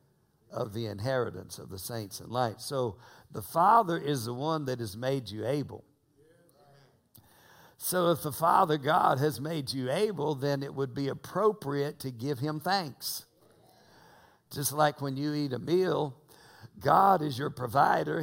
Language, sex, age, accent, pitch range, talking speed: English, male, 60-79, American, 130-170 Hz, 160 wpm